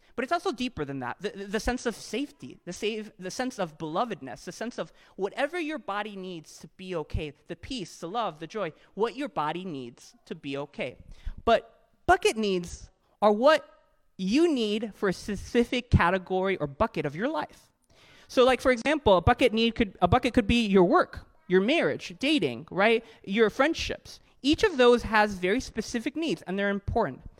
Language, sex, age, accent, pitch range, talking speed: English, male, 20-39, American, 195-275 Hz, 190 wpm